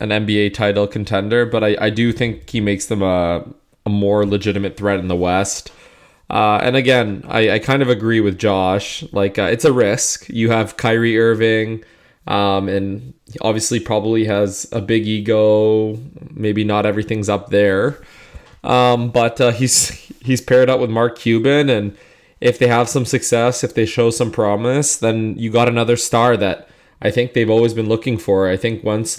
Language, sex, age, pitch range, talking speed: English, male, 20-39, 105-120 Hz, 185 wpm